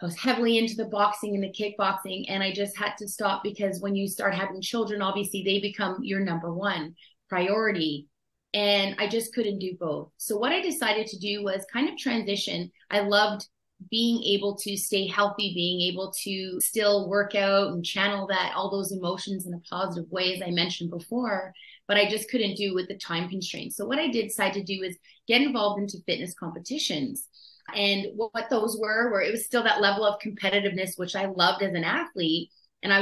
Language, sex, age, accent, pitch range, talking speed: English, female, 30-49, American, 185-215 Hz, 205 wpm